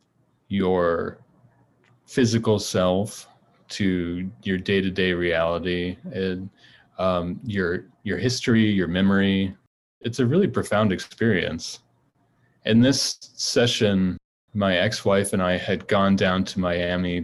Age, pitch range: 20-39, 90-110 Hz